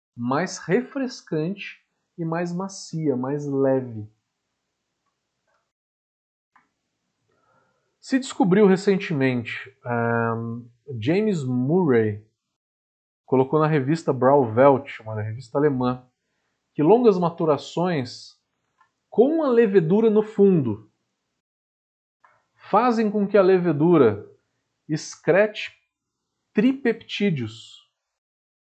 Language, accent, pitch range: Portuguese, Brazilian, 125-205 Hz